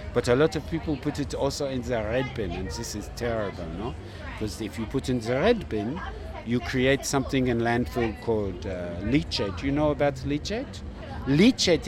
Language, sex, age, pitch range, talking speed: English, male, 60-79, 110-145 Hz, 195 wpm